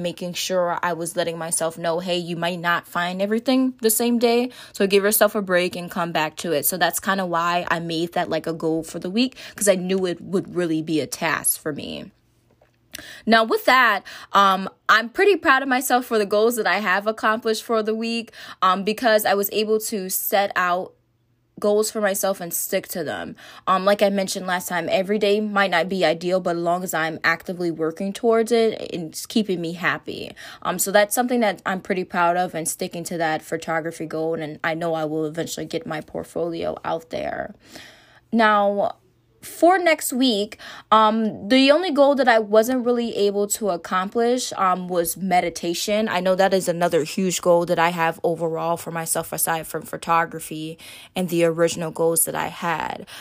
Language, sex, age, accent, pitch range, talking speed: English, female, 20-39, American, 170-215 Hz, 200 wpm